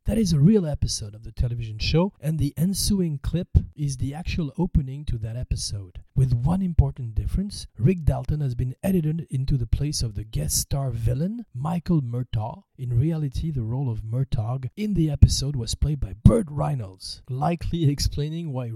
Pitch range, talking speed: 120-155 Hz, 180 wpm